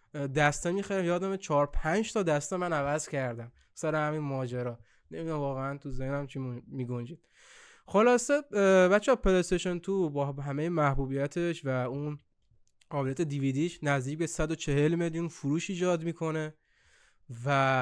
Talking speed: 140 wpm